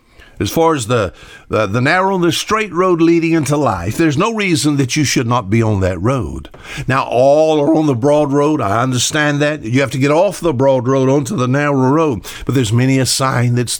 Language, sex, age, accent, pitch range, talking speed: English, male, 60-79, American, 115-160 Hz, 230 wpm